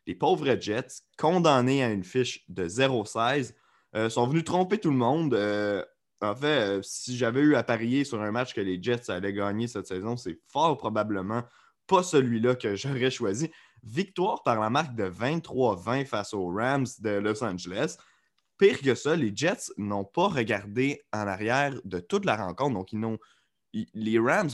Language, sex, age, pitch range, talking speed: French, male, 20-39, 105-135 Hz, 185 wpm